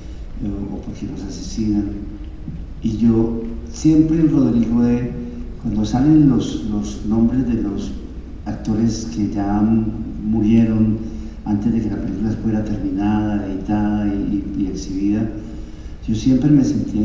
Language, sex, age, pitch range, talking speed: Spanish, male, 50-69, 105-125 Hz, 130 wpm